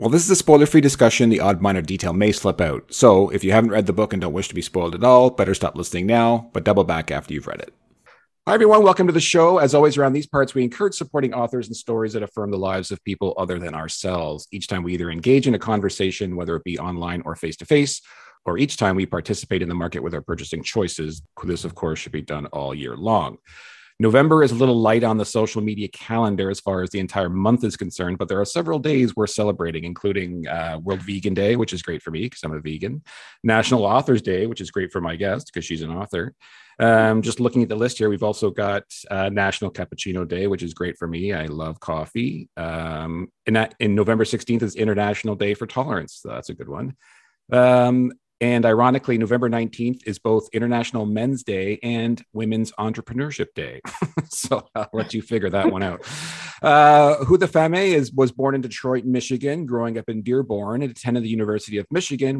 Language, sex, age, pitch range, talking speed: English, male, 40-59, 95-125 Hz, 220 wpm